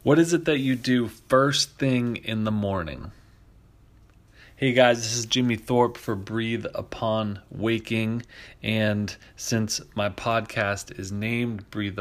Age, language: 30-49, English